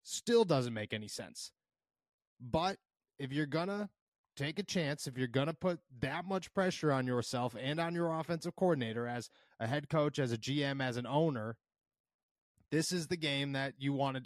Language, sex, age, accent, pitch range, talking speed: English, male, 30-49, American, 130-160 Hz, 190 wpm